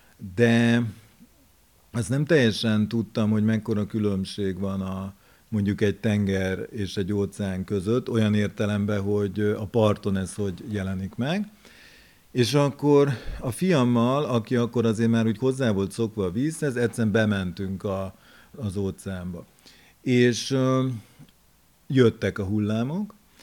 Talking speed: 125 wpm